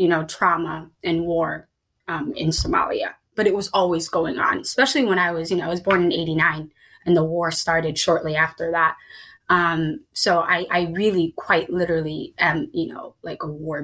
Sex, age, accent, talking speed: female, 20-39, American, 195 wpm